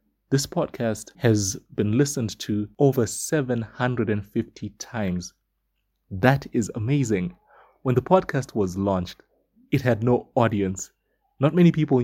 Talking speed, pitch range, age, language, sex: 120 wpm, 105-135 Hz, 30-49, English, male